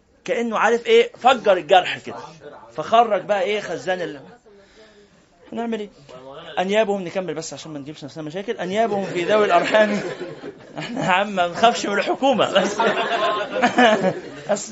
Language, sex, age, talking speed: Arabic, male, 20-39, 130 wpm